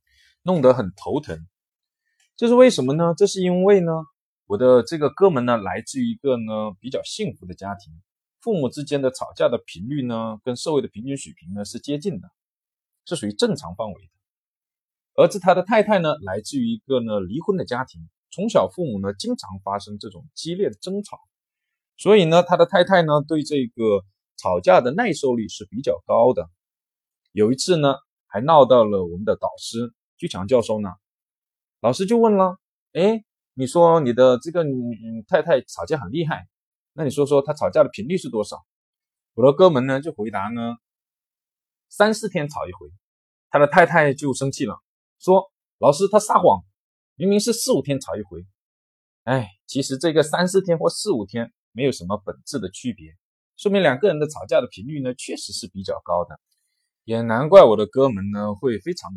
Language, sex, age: Chinese, male, 20-39